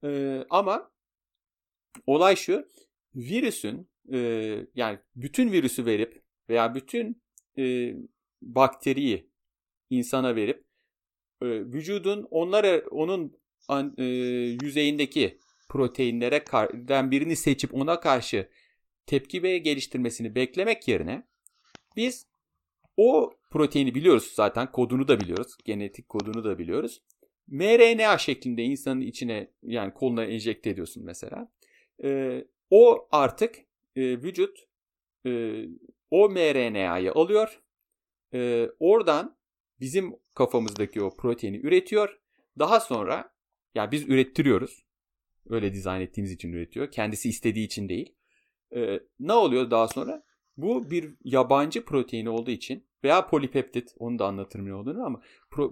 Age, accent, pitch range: 40-59, native, 115-165 Hz